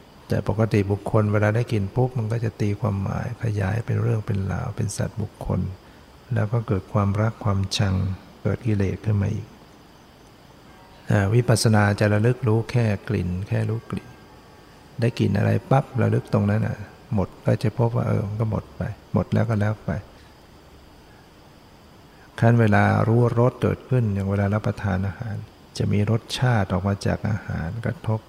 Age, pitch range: 60-79, 100-115 Hz